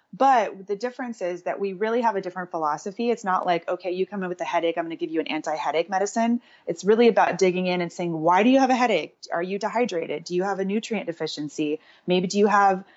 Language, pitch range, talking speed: English, 170-215 Hz, 255 wpm